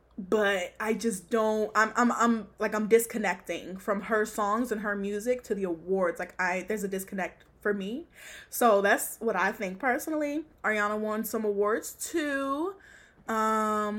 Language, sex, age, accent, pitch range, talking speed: English, female, 10-29, American, 195-245 Hz, 165 wpm